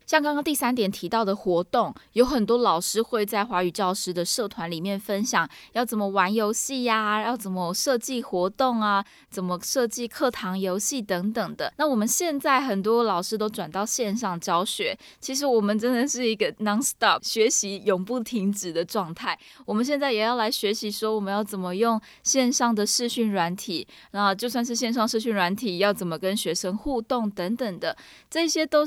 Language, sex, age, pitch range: Chinese, female, 20-39, 185-235 Hz